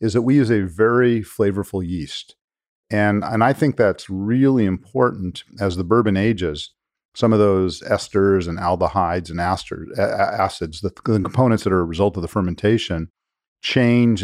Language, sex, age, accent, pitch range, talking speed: English, male, 40-59, American, 90-110 Hz, 155 wpm